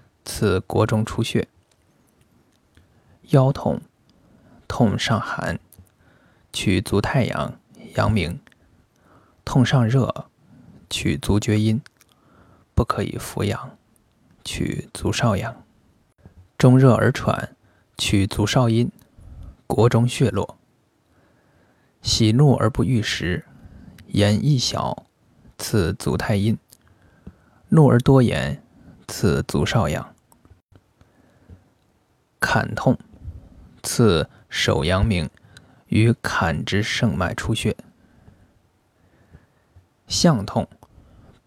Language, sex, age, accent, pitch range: Chinese, male, 20-39, native, 95-125 Hz